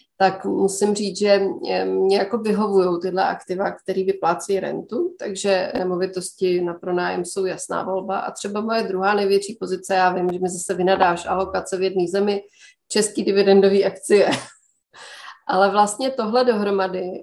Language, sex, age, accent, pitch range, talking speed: Czech, female, 30-49, native, 185-210 Hz, 150 wpm